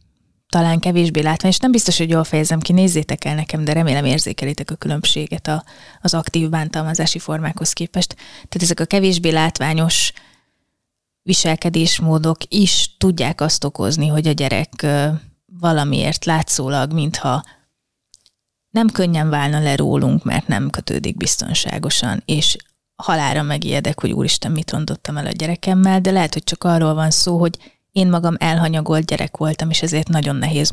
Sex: female